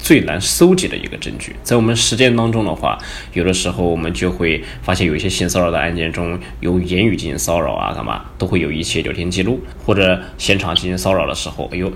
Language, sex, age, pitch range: Chinese, male, 20-39, 85-115 Hz